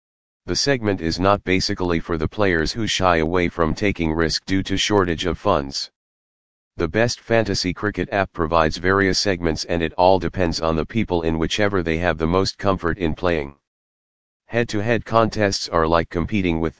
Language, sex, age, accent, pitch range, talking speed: English, male, 40-59, American, 80-100 Hz, 175 wpm